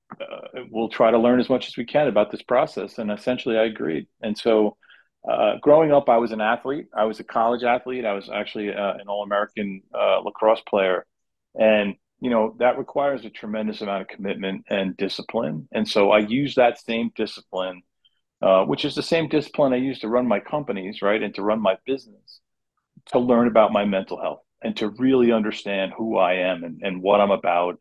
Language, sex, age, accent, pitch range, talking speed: English, male, 40-59, American, 100-125 Hz, 205 wpm